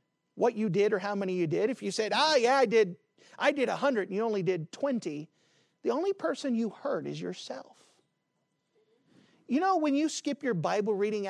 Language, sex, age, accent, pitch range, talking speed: English, male, 40-59, American, 185-265 Hz, 200 wpm